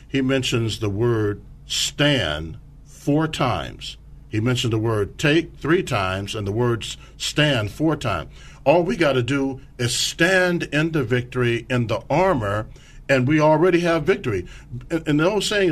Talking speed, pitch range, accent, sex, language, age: 165 wpm, 115-145 Hz, American, male, English, 50-69